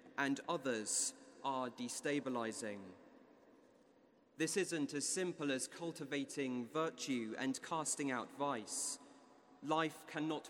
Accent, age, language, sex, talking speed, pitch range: British, 30-49, English, male, 95 wpm, 130-155 Hz